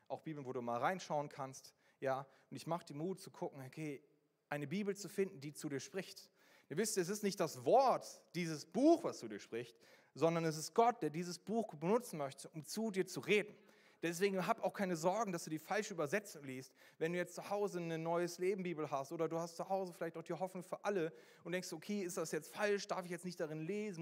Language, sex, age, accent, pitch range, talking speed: German, male, 30-49, German, 135-185 Hz, 240 wpm